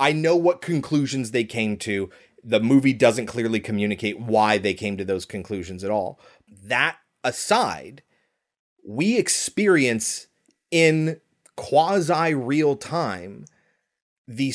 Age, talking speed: 30-49, 120 wpm